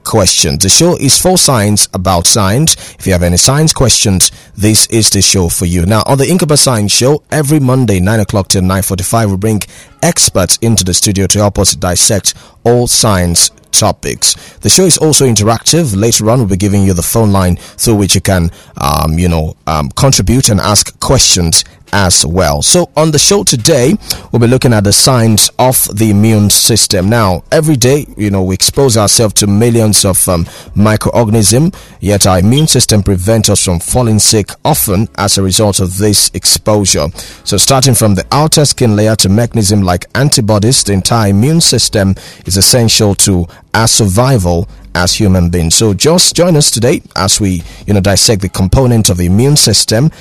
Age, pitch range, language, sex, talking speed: 30-49, 95-120 Hz, English, male, 185 wpm